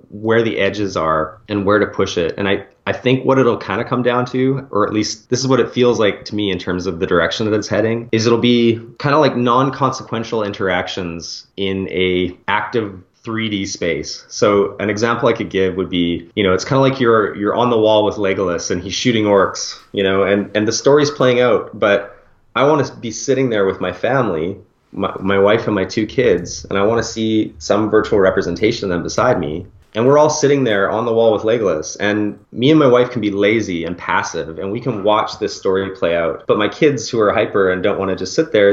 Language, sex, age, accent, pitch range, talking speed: English, male, 30-49, American, 95-120 Hz, 240 wpm